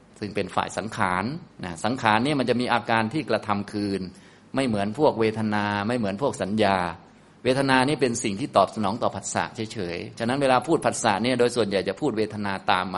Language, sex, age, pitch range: Thai, male, 20-39, 100-125 Hz